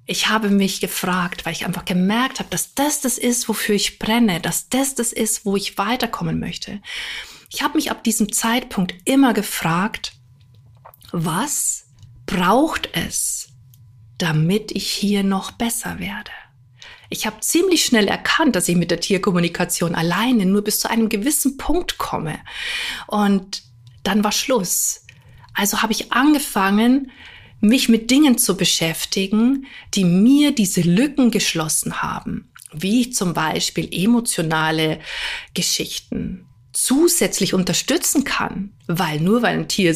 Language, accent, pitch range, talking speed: German, German, 170-230 Hz, 140 wpm